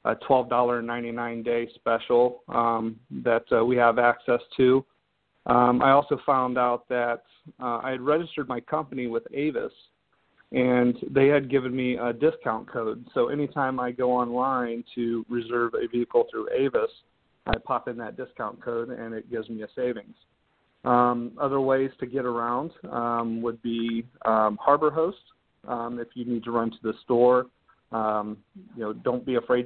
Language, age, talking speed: English, 40-59, 165 wpm